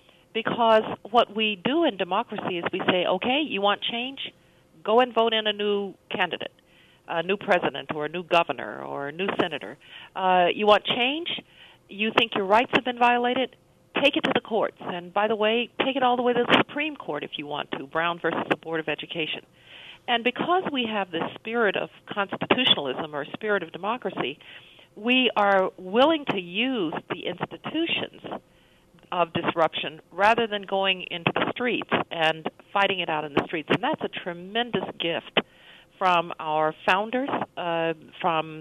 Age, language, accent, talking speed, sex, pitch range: 50-69, English, American, 175 wpm, female, 175-230 Hz